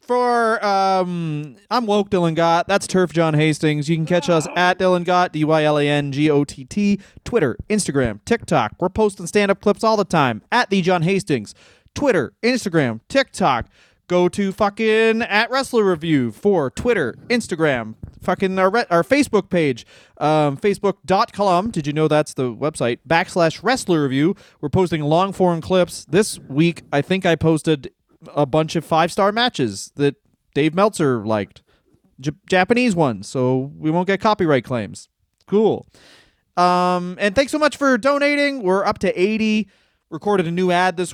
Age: 30-49